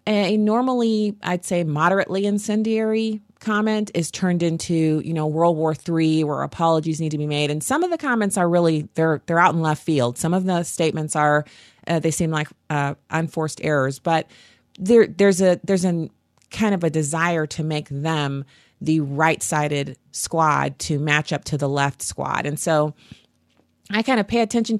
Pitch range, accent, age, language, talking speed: 145-175 Hz, American, 30-49, English, 185 wpm